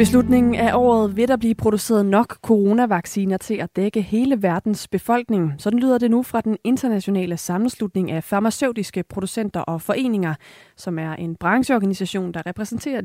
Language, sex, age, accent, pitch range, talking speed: Danish, female, 30-49, native, 180-220 Hz, 155 wpm